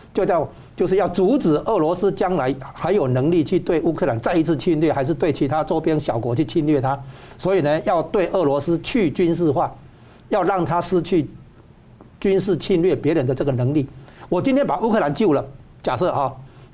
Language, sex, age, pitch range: Chinese, male, 60-79, 135-190 Hz